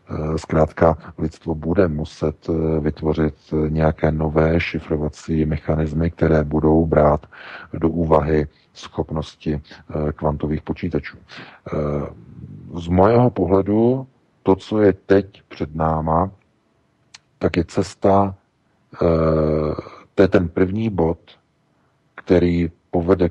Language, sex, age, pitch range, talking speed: Czech, male, 40-59, 80-85 Hz, 95 wpm